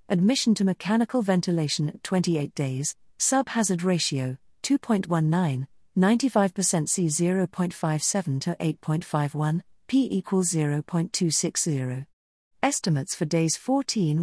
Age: 40-59